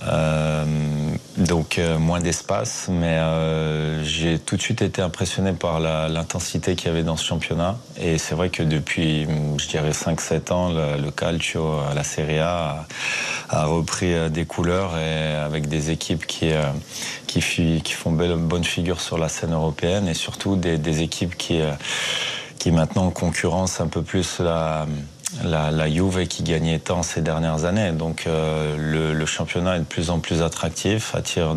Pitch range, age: 75-85 Hz, 20-39